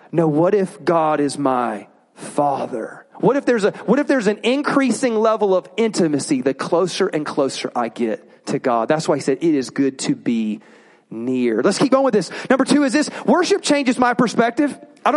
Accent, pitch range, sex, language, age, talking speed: American, 210-270 Hz, male, English, 30-49, 205 wpm